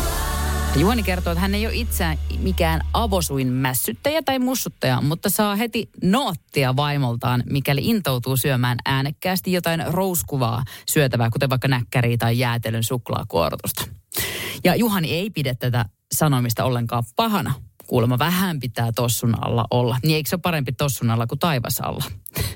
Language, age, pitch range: Finnish, 30-49, 120-180 Hz